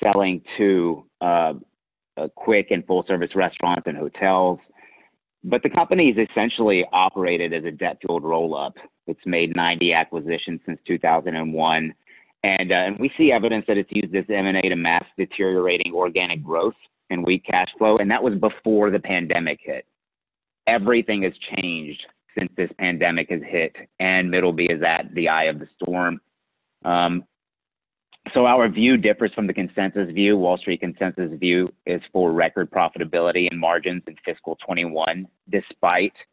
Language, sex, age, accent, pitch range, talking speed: English, male, 30-49, American, 85-95 Hz, 155 wpm